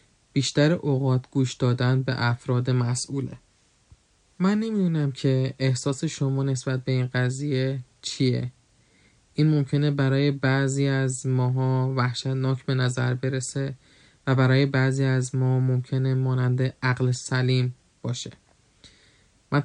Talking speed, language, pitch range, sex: 115 wpm, Persian, 130-145 Hz, male